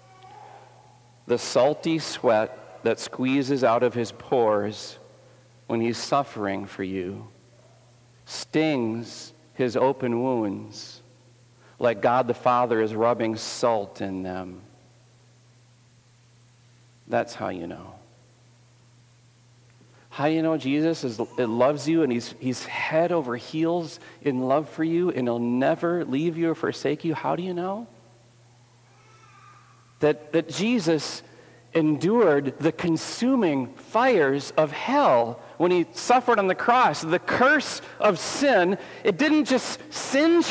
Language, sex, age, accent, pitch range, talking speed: English, male, 40-59, American, 120-170 Hz, 125 wpm